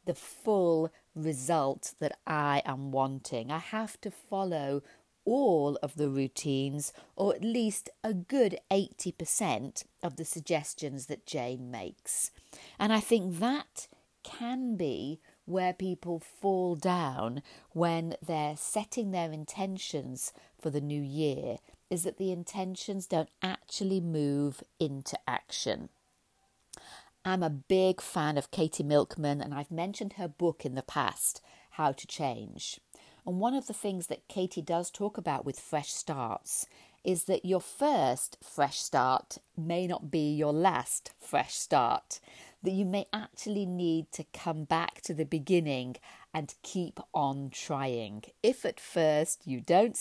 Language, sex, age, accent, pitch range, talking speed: English, female, 40-59, British, 145-190 Hz, 145 wpm